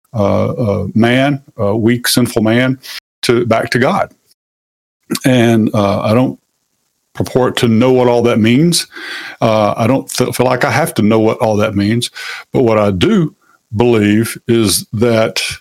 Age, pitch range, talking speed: 50-69, 110-130 Hz, 160 wpm